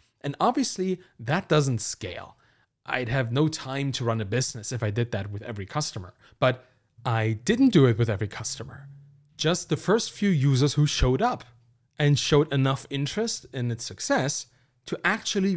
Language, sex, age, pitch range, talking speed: English, male, 30-49, 120-175 Hz, 175 wpm